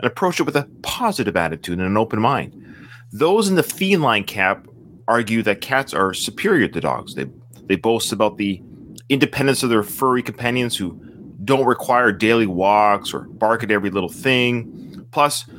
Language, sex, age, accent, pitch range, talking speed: English, male, 30-49, American, 110-140 Hz, 175 wpm